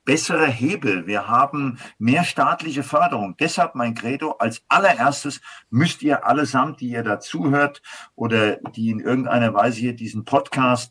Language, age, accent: German, 50-69, German